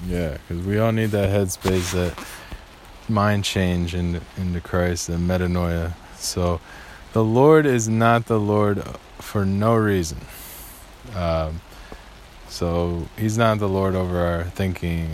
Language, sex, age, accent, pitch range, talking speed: English, male, 20-39, American, 80-105 Hz, 135 wpm